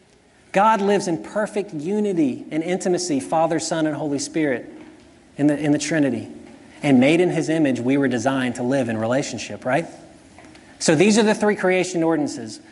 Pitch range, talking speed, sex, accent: 145-195 Hz, 170 wpm, male, American